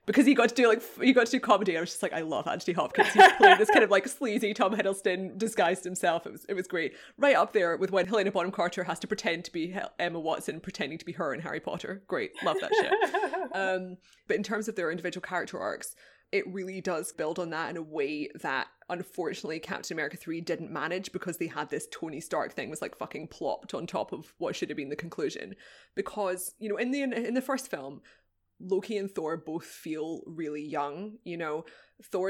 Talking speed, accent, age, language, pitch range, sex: 230 wpm, British, 20-39, English, 165-215 Hz, female